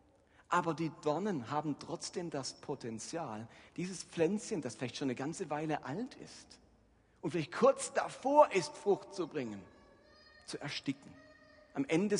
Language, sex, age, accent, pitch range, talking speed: German, male, 50-69, German, 140-205 Hz, 145 wpm